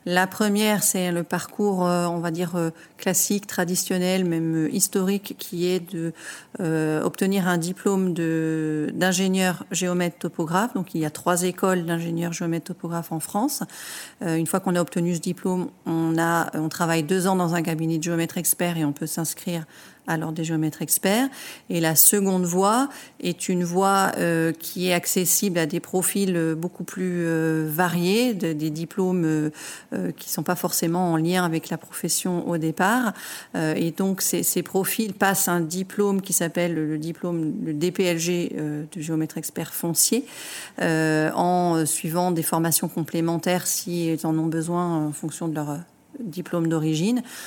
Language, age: French, 50-69